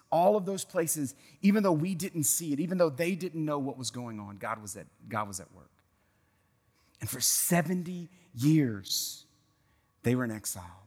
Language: English